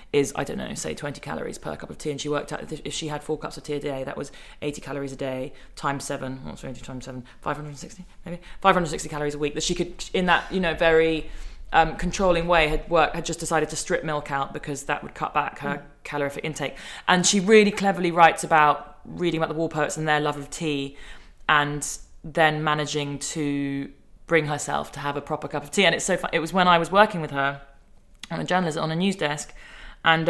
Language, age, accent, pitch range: English, 20-39, British, 145-165 Hz